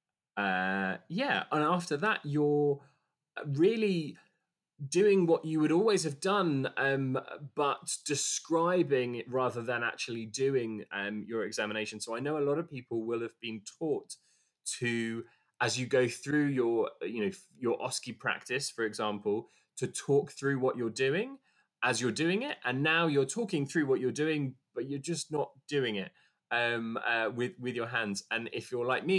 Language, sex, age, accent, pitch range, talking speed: English, male, 20-39, British, 115-145 Hz, 175 wpm